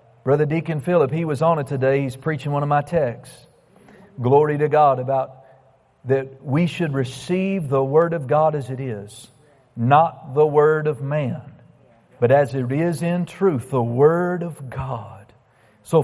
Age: 40-59